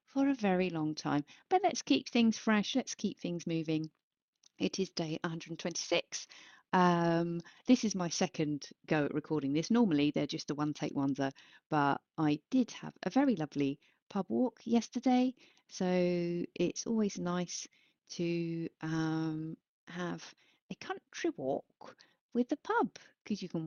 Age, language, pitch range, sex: 40-59, English, 155-230 Hz, female